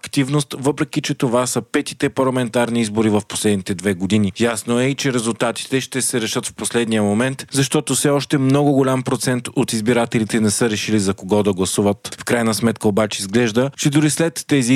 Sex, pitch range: male, 110-130 Hz